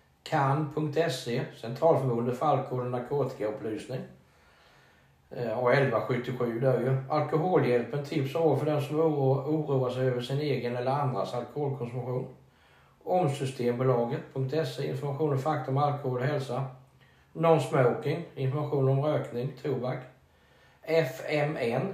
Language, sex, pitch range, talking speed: Swedish, male, 125-150 Hz, 110 wpm